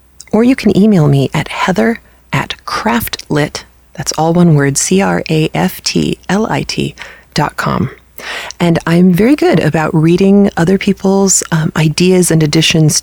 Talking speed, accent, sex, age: 120 wpm, American, female, 30-49